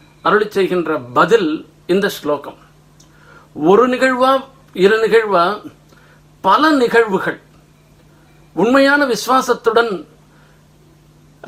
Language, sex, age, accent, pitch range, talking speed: Tamil, male, 50-69, native, 175-235 Hz, 65 wpm